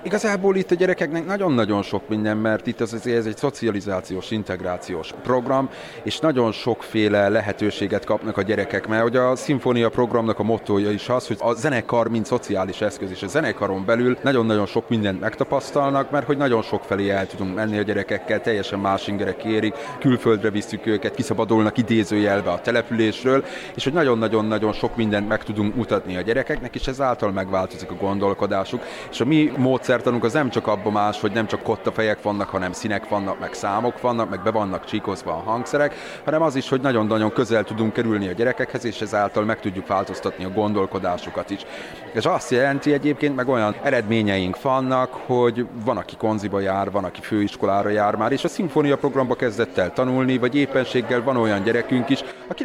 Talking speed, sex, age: 180 wpm, male, 30-49